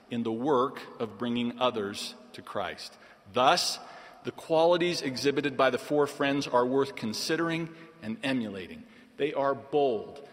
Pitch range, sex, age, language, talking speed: 135-170 Hz, male, 50-69, English, 140 wpm